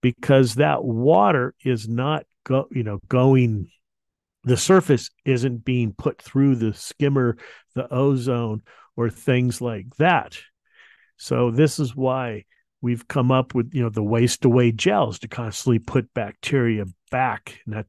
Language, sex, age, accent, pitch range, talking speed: English, male, 50-69, American, 110-135 Hz, 145 wpm